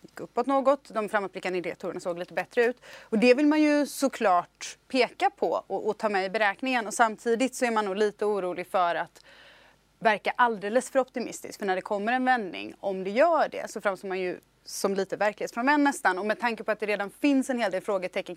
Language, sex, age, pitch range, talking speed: English, female, 30-49, 180-245 Hz, 220 wpm